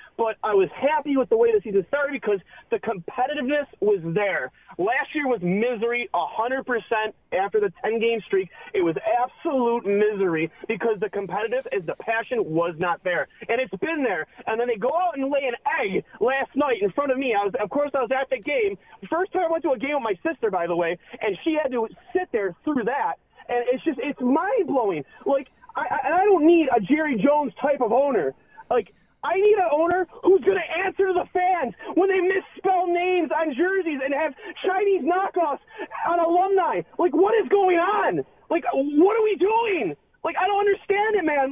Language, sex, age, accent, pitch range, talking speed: German, male, 30-49, American, 255-385 Hz, 210 wpm